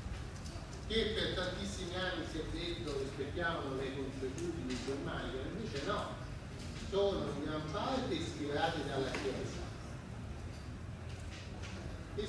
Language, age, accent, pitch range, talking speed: Italian, 40-59, native, 95-155 Hz, 110 wpm